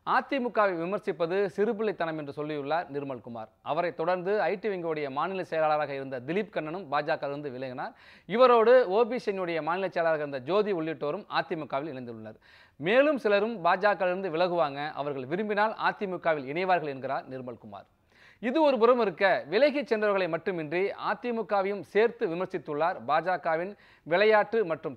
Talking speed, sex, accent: 120 wpm, male, native